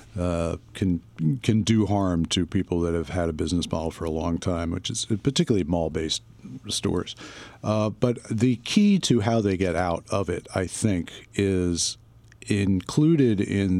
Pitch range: 90-115 Hz